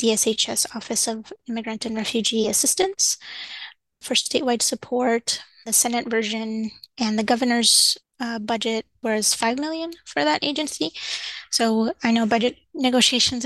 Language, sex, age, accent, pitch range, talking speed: English, female, 20-39, American, 220-255 Hz, 130 wpm